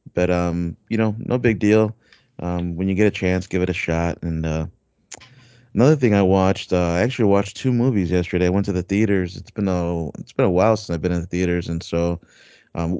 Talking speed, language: 235 wpm, English